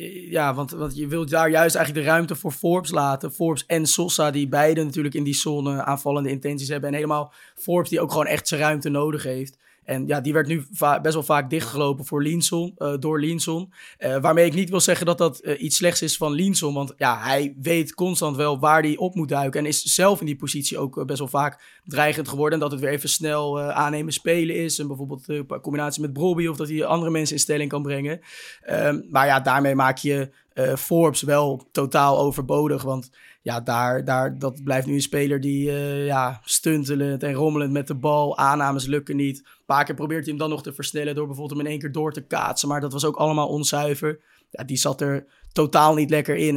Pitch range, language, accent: 140-155 Hz, Dutch, Dutch